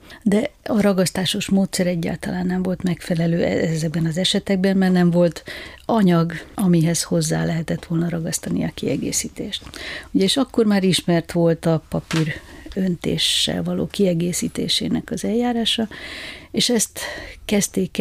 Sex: female